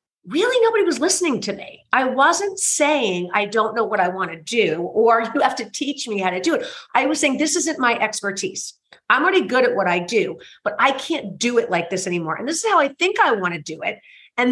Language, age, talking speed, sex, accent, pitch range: English, 40-59, 250 wpm, female, American, 200-280 Hz